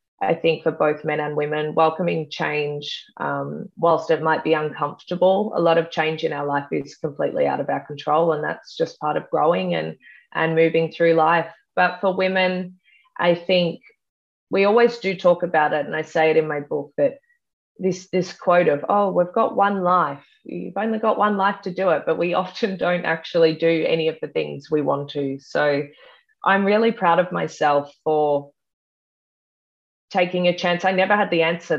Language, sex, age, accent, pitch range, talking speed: English, female, 20-39, Australian, 155-185 Hz, 195 wpm